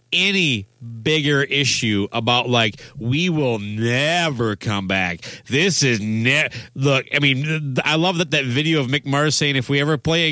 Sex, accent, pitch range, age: male, American, 120-170 Hz, 40-59